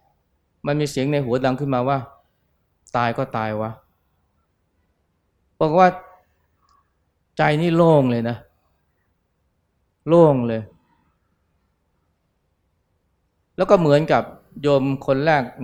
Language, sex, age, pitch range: Thai, male, 20-39, 85-135 Hz